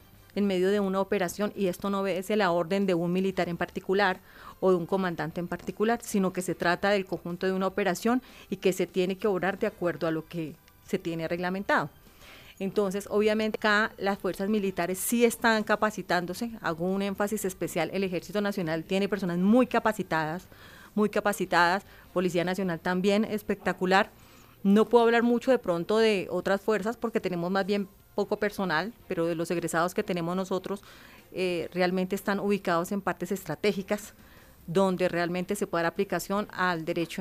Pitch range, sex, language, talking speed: 175-210 Hz, female, Spanish, 175 wpm